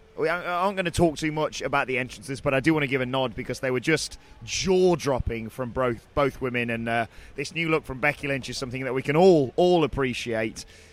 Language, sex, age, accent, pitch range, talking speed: English, male, 30-49, British, 130-175 Hz, 235 wpm